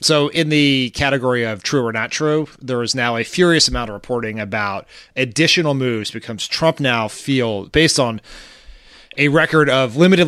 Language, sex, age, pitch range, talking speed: English, male, 30-49, 115-150 Hz, 175 wpm